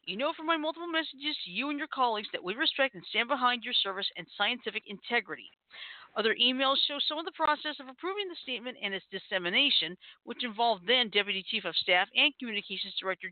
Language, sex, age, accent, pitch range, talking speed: English, female, 50-69, American, 195-280 Hz, 205 wpm